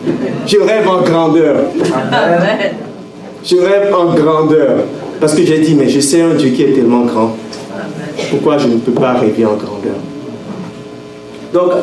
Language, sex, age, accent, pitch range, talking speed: French, male, 50-69, French, 140-200 Hz, 150 wpm